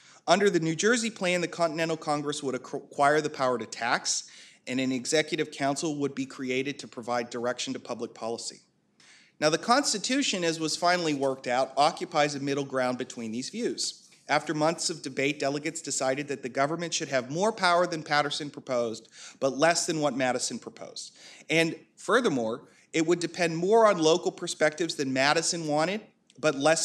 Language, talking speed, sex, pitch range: English, 175 wpm, male, 135-180 Hz